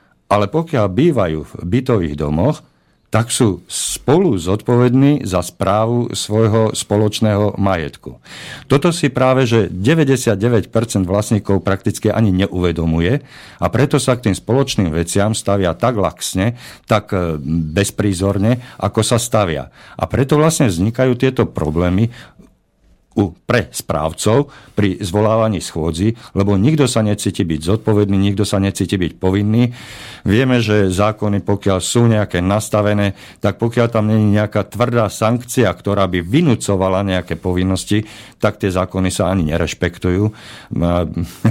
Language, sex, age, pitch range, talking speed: Slovak, male, 50-69, 90-110 Hz, 125 wpm